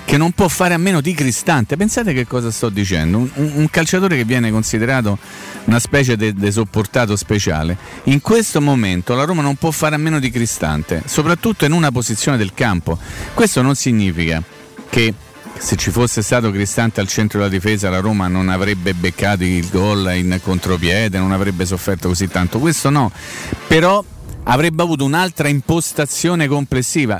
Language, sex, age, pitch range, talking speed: Italian, male, 40-59, 105-155 Hz, 170 wpm